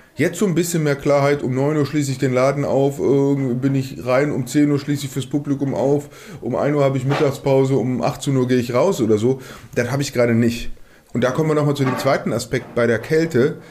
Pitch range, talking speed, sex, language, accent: 120-145 Hz, 245 wpm, male, German, German